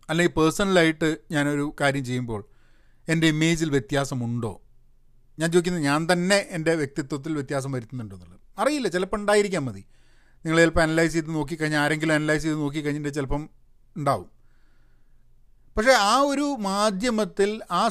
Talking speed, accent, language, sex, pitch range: 125 wpm, native, Malayalam, male, 145-185 Hz